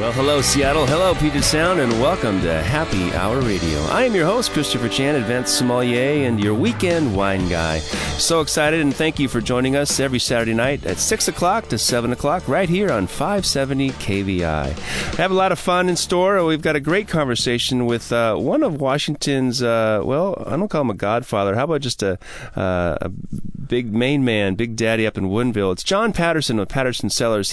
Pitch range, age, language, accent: 100-140 Hz, 30-49, English, American